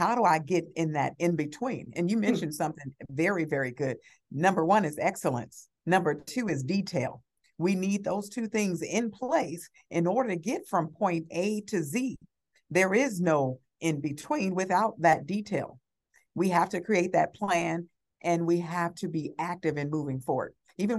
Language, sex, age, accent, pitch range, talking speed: English, female, 50-69, American, 160-220 Hz, 175 wpm